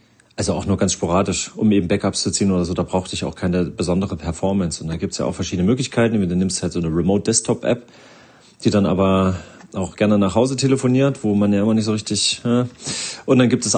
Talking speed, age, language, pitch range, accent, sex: 235 wpm, 40-59, German, 95-115 Hz, German, male